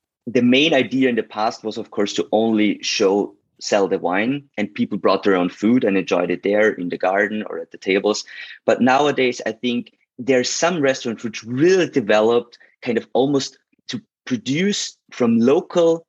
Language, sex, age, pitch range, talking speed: English, male, 30-49, 110-140 Hz, 185 wpm